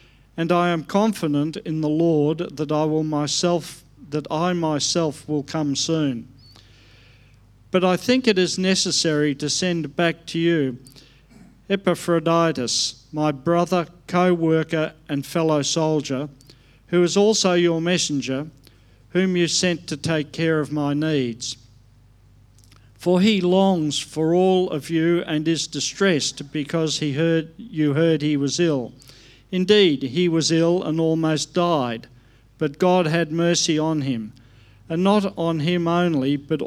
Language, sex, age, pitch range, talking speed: English, male, 50-69, 135-170 Hz, 140 wpm